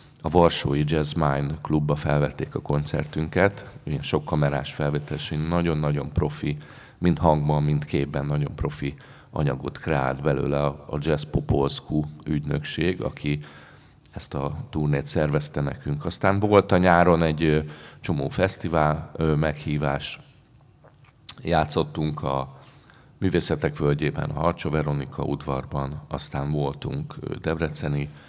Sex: male